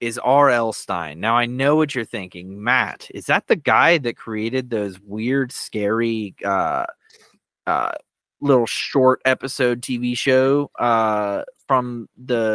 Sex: male